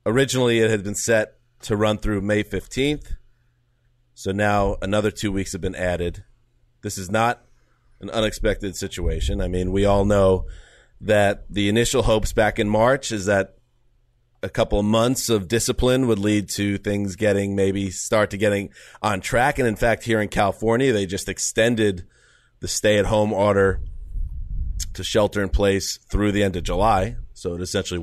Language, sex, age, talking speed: English, male, 30-49, 170 wpm